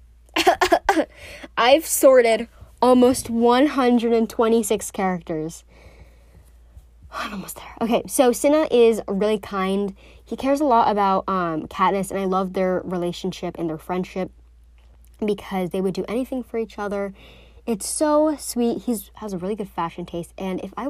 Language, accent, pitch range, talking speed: English, American, 155-235 Hz, 145 wpm